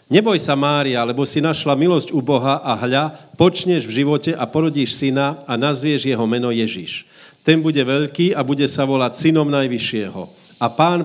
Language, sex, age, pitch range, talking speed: Slovak, male, 50-69, 115-150 Hz, 180 wpm